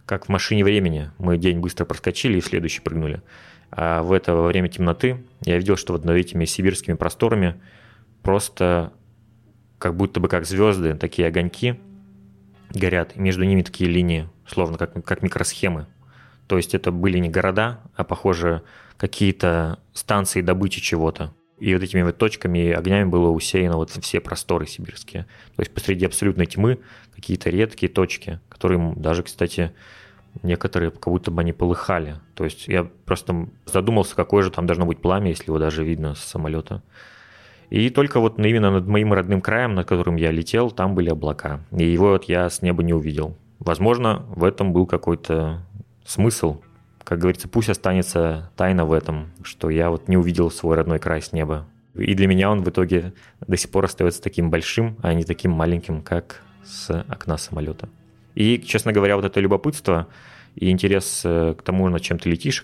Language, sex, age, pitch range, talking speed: Russian, male, 20-39, 85-100 Hz, 170 wpm